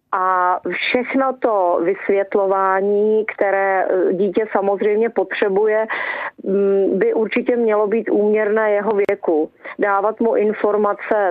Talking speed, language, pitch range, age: 95 wpm, Czech, 185-220 Hz, 40-59